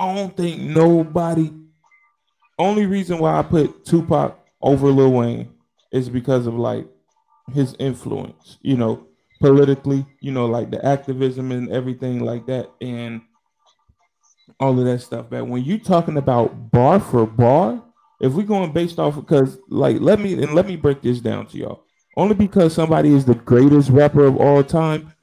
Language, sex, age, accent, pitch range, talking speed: English, male, 20-39, American, 125-165 Hz, 170 wpm